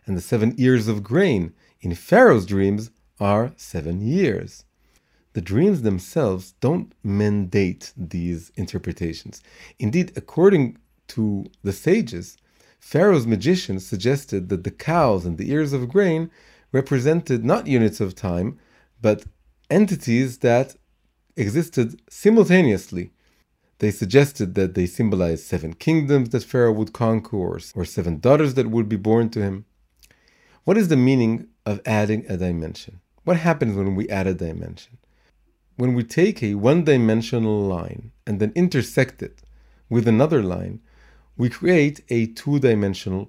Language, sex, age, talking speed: English, male, 40-59, 135 wpm